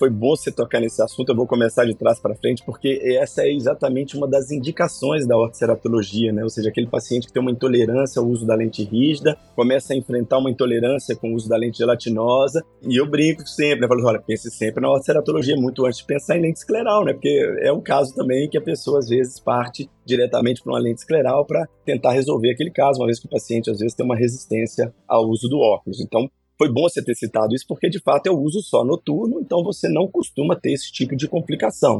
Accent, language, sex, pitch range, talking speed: Brazilian, Portuguese, male, 115-140 Hz, 235 wpm